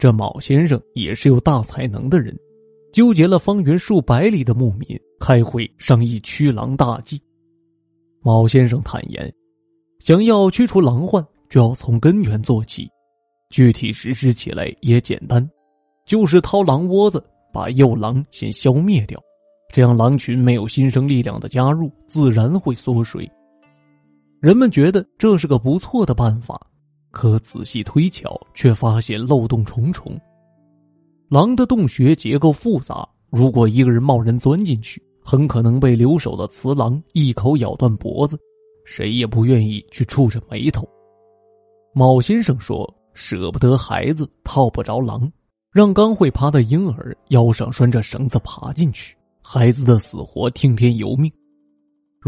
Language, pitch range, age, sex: Chinese, 115-160 Hz, 20-39, male